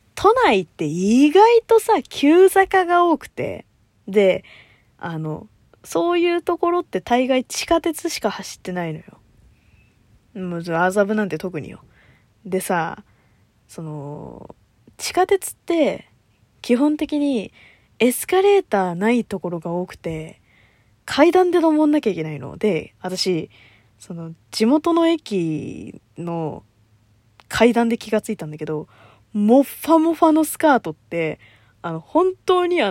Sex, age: female, 20-39